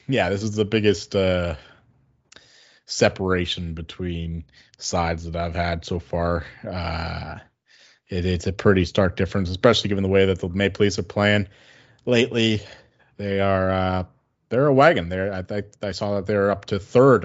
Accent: American